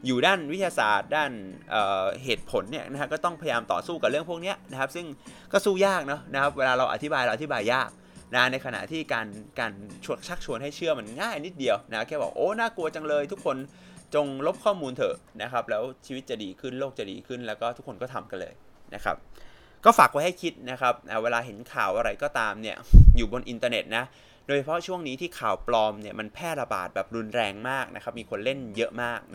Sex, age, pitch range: male, 20-39, 115-155 Hz